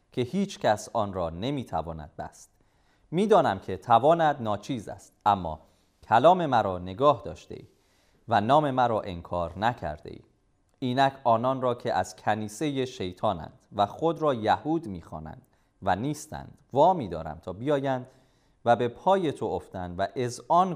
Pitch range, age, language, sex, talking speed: 95-130 Hz, 30-49, Persian, male, 145 wpm